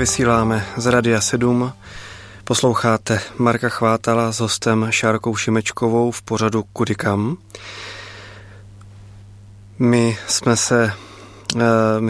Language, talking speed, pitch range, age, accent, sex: Czech, 80 wpm, 105-115 Hz, 20-39, native, male